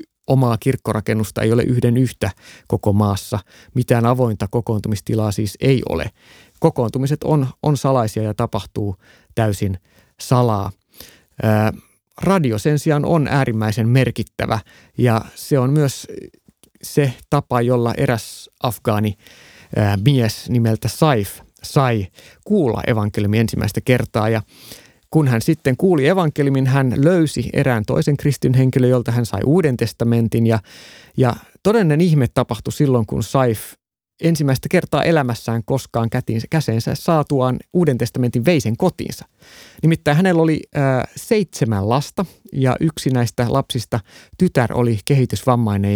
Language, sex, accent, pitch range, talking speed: Finnish, male, native, 110-145 Hz, 120 wpm